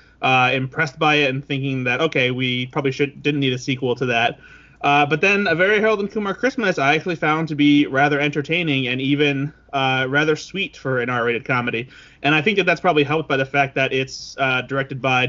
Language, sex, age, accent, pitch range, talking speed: English, male, 20-39, American, 130-160 Hz, 225 wpm